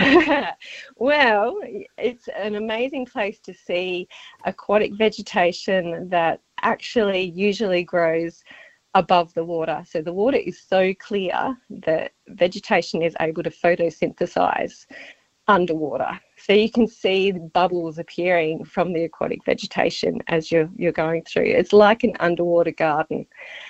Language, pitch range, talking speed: English, 170-215 Hz, 125 wpm